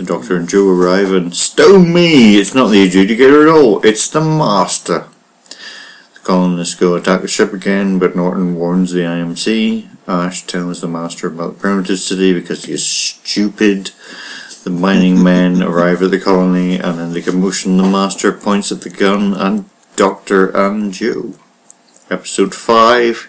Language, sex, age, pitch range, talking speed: English, male, 50-69, 90-100 Hz, 165 wpm